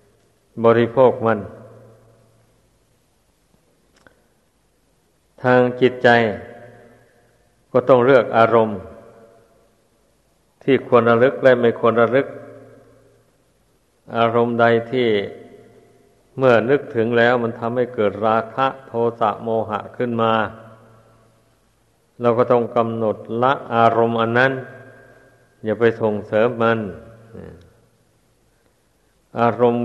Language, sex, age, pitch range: Thai, male, 60-79, 115-125 Hz